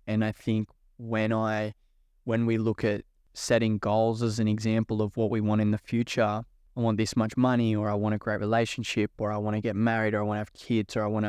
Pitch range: 105-110 Hz